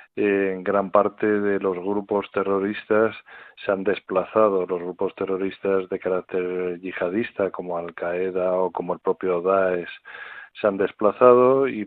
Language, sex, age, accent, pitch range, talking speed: Spanish, male, 40-59, Spanish, 95-105 Hz, 135 wpm